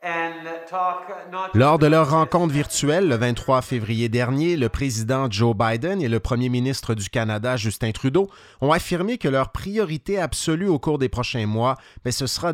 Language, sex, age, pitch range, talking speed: French, male, 30-49, 115-150 Hz, 170 wpm